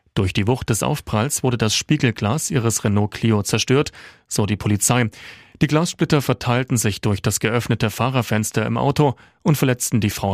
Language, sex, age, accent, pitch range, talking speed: German, male, 40-59, German, 105-140 Hz, 170 wpm